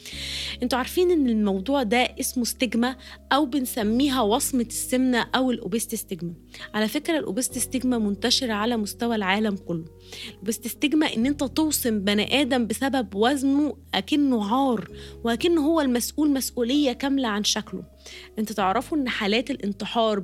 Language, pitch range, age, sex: Arabic, 205-255 Hz, 20-39, female